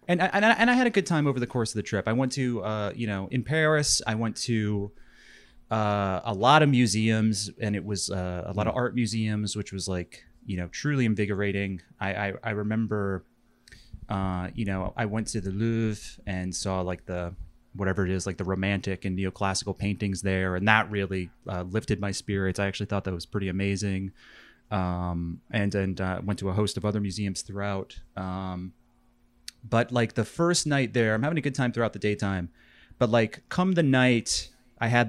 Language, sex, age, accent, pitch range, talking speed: English, male, 30-49, American, 95-120 Hz, 205 wpm